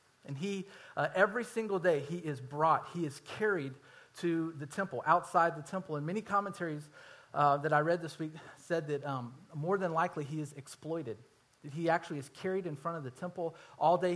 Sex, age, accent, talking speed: male, 40-59, American, 205 wpm